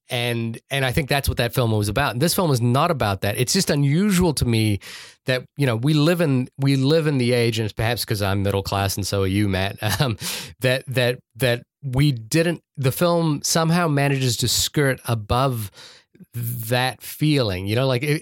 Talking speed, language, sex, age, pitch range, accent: 205 wpm, English, male, 30-49, 110-150 Hz, American